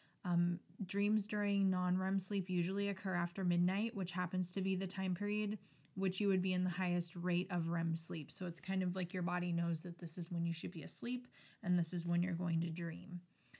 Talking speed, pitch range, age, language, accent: 225 wpm, 180-205 Hz, 20-39, English, American